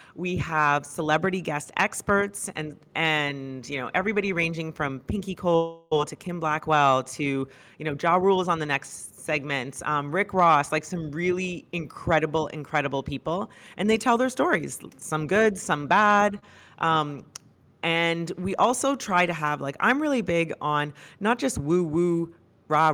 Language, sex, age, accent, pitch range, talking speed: English, female, 30-49, American, 150-180 Hz, 160 wpm